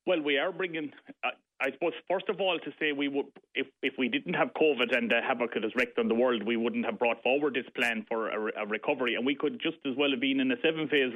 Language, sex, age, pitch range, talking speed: English, male, 30-49, 120-145 Hz, 270 wpm